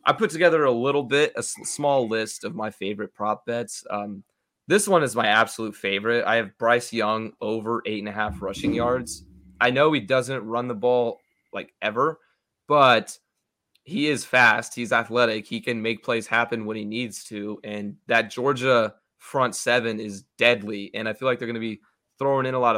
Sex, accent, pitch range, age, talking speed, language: male, American, 105-120 Hz, 20-39, 200 wpm, English